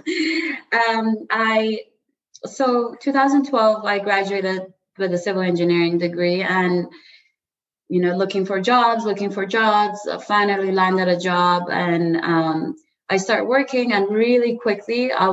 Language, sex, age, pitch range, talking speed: English, female, 20-39, 170-215 Hz, 135 wpm